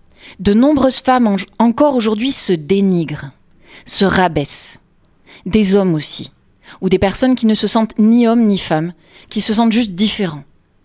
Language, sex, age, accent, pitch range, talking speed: French, female, 40-59, French, 160-220 Hz, 160 wpm